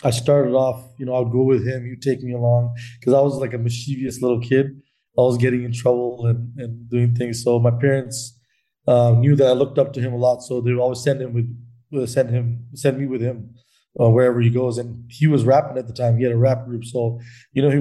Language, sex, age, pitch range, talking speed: English, male, 20-39, 120-135 Hz, 265 wpm